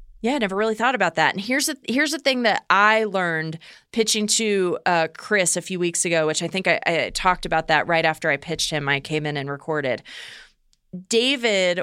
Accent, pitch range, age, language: American, 180-225 Hz, 30-49, English